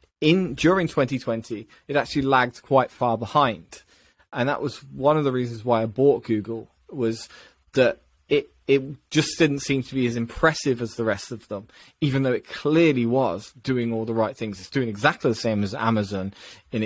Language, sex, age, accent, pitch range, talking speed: English, male, 20-39, British, 115-140 Hz, 190 wpm